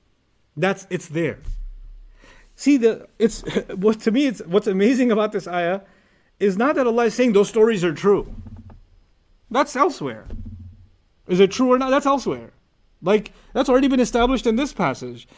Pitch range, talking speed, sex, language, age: 175-240 Hz, 165 wpm, male, English, 30-49